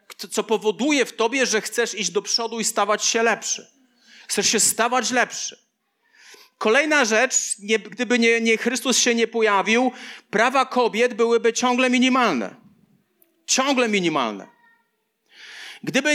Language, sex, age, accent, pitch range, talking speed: Polish, male, 40-59, native, 210-245 Hz, 130 wpm